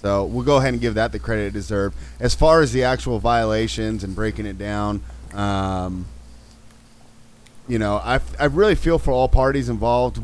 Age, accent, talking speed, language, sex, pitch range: 30-49, American, 180 wpm, English, male, 100-125 Hz